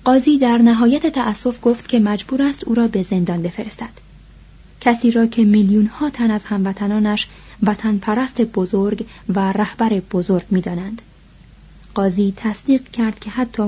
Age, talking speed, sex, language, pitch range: 30-49, 150 wpm, female, Persian, 200-245 Hz